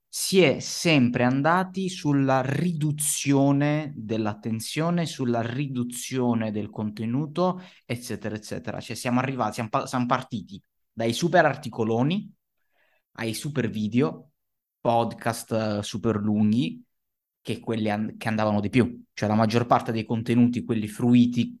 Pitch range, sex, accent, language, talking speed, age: 110-145 Hz, male, native, Italian, 115 wpm, 20-39